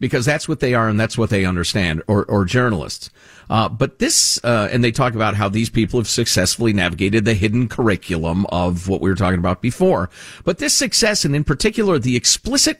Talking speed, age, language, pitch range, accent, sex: 210 wpm, 50-69, English, 110-175 Hz, American, male